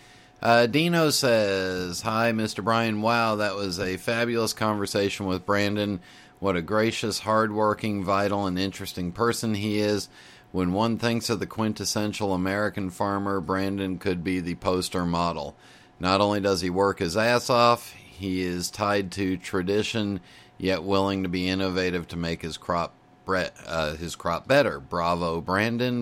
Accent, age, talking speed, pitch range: American, 40-59, 155 wpm, 90-105 Hz